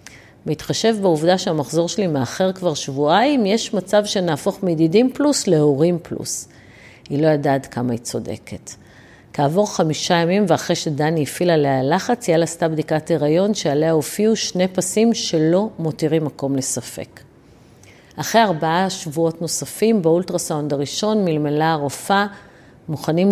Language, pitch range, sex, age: Hebrew, 145-185 Hz, female, 50-69